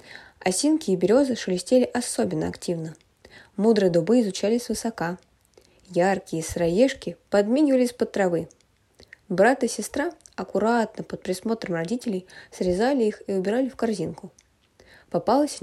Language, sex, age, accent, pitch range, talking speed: Russian, female, 20-39, native, 185-265 Hz, 110 wpm